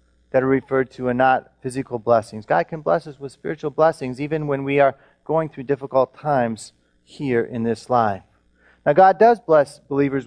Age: 30-49